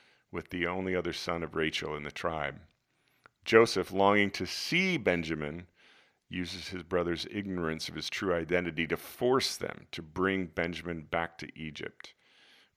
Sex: male